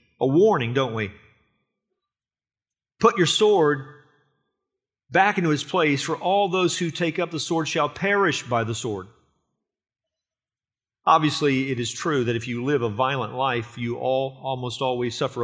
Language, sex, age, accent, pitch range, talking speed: English, male, 40-59, American, 115-155 Hz, 155 wpm